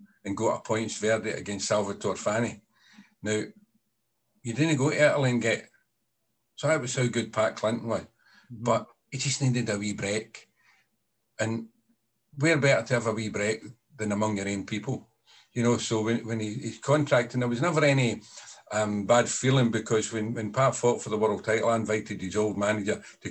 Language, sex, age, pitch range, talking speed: English, male, 50-69, 105-125 Hz, 190 wpm